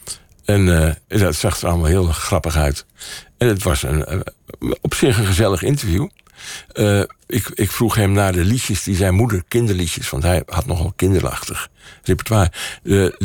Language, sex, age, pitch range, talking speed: Dutch, male, 60-79, 85-115 Hz, 175 wpm